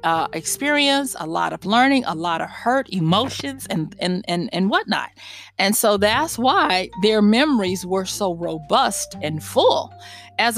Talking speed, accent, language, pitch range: 160 wpm, American, English, 180-260 Hz